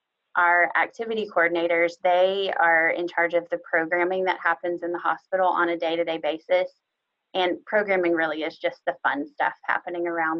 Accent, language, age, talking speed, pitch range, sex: American, English, 20-39, 165 wpm, 165-185 Hz, female